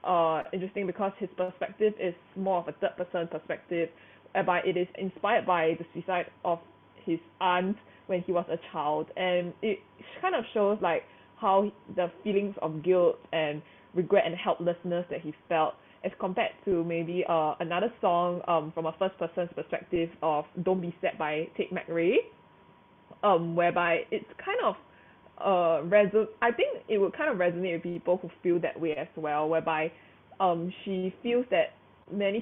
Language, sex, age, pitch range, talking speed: English, female, 20-39, 165-195 Hz, 170 wpm